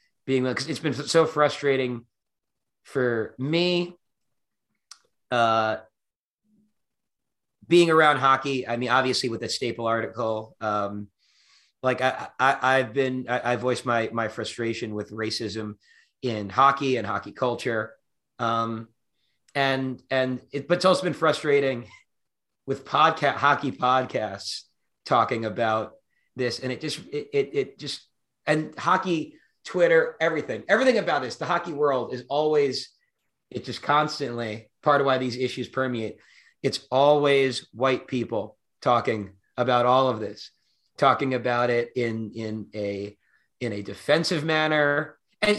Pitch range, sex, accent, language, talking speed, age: 115-145 Hz, male, American, English, 135 wpm, 30-49